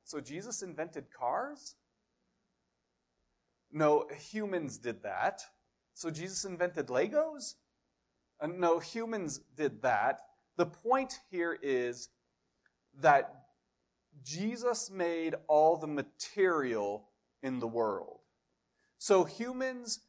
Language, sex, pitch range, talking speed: English, male, 135-195 Hz, 95 wpm